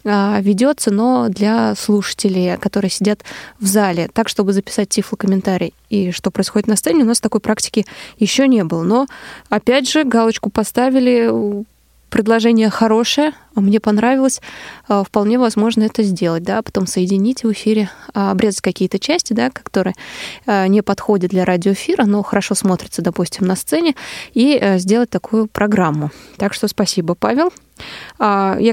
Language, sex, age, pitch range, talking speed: Russian, female, 20-39, 195-230 Hz, 140 wpm